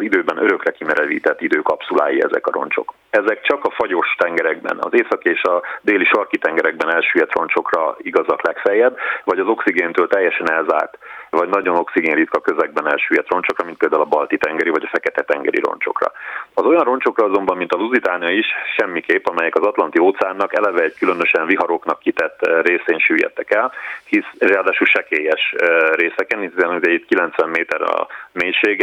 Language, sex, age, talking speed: Hungarian, male, 30-49, 155 wpm